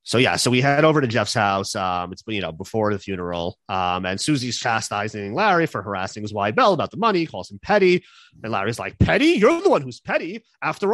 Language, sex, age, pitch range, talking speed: English, male, 30-49, 115-160 Hz, 230 wpm